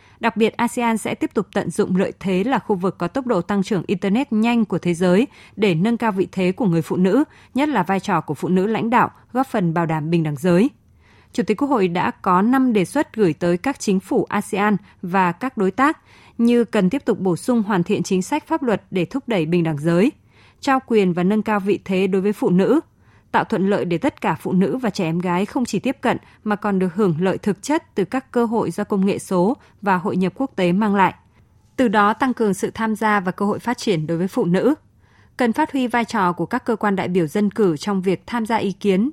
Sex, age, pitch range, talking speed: female, 20-39, 185-230 Hz, 260 wpm